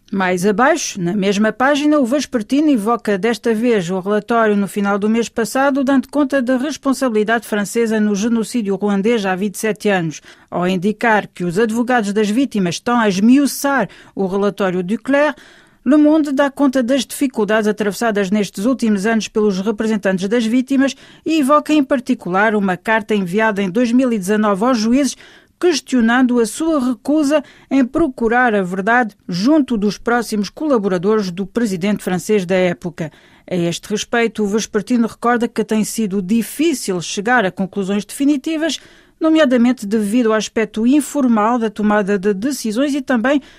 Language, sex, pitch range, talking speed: Portuguese, female, 205-265 Hz, 150 wpm